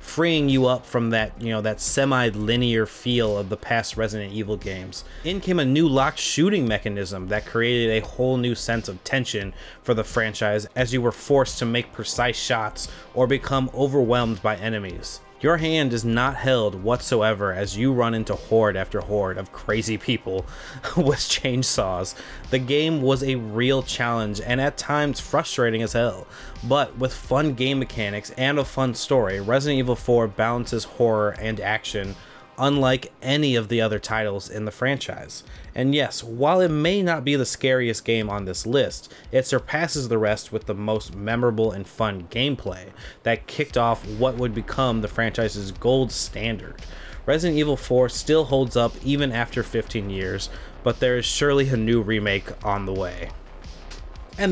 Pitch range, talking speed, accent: 105-130 Hz, 175 wpm, American